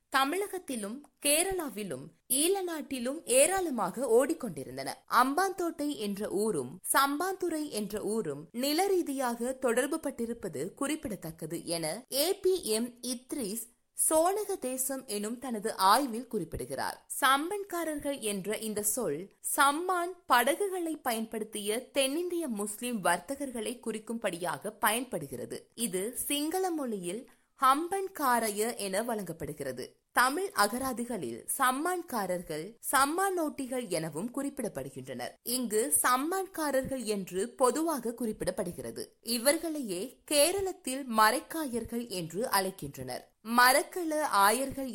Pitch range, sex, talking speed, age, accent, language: 210-295 Hz, female, 85 wpm, 20-39, native, Tamil